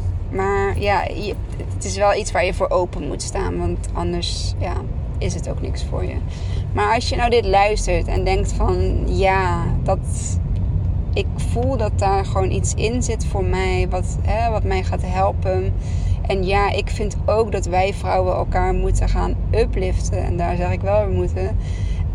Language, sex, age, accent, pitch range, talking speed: Dutch, female, 20-39, Dutch, 90-100 Hz, 170 wpm